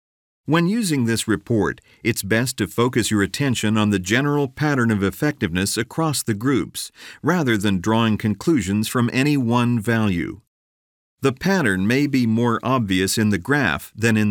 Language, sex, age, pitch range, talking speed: English, male, 50-69, 100-130 Hz, 160 wpm